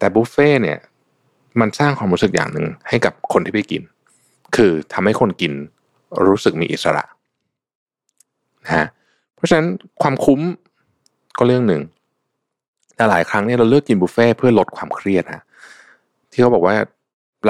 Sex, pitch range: male, 90-135 Hz